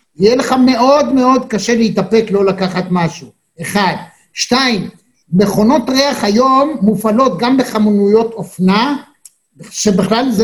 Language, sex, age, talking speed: Hebrew, male, 60-79, 115 wpm